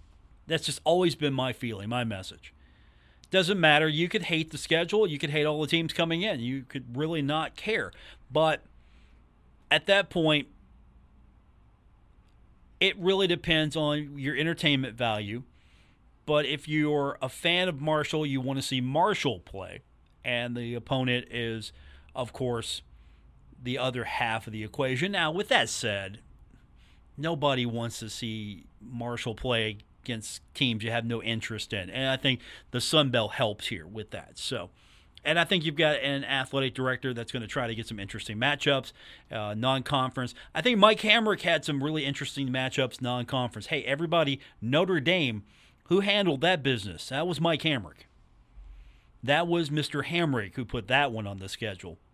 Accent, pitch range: American, 110-150 Hz